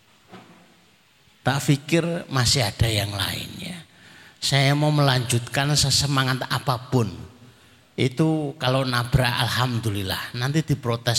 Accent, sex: native, male